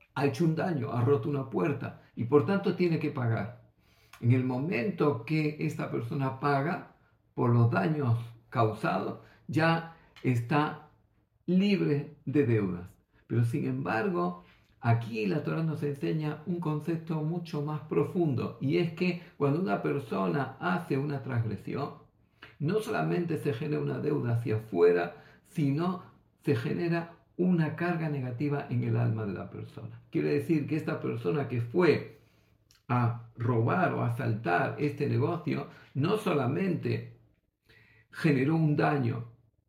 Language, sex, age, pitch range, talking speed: Greek, male, 50-69, 120-155 Hz, 135 wpm